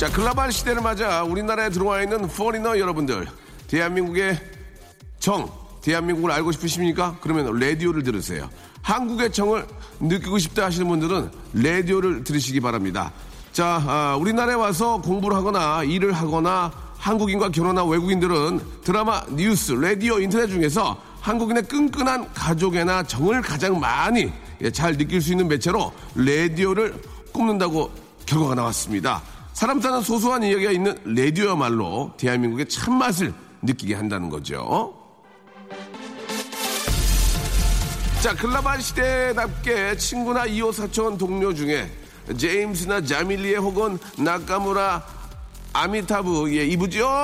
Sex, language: male, Korean